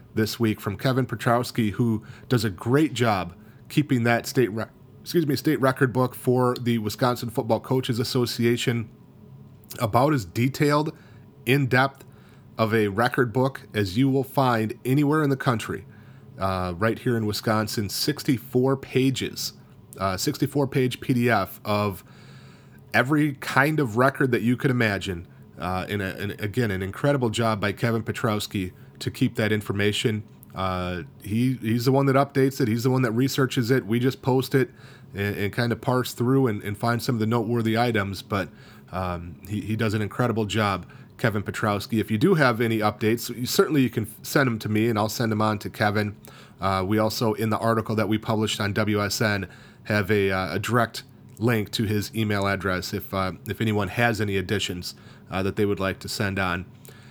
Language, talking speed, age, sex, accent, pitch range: English, 185 wpm, 30-49, male, American, 105-130 Hz